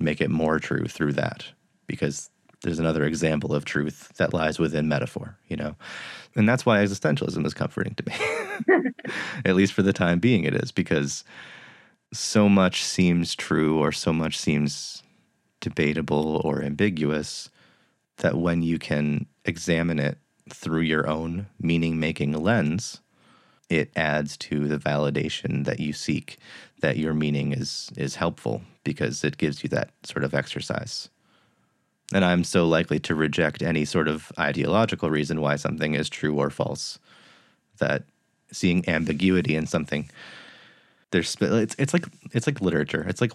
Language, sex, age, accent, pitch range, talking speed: English, male, 30-49, American, 75-95 Hz, 150 wpm